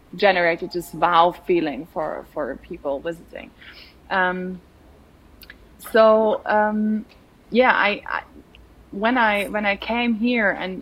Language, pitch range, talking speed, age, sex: Persian, 175-210 Hz, 115 wpm, 20-39, female